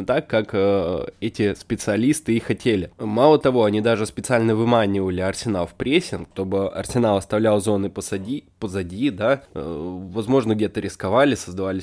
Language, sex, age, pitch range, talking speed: Russian, male, 20-39, 100-115 Hz, 135 wpm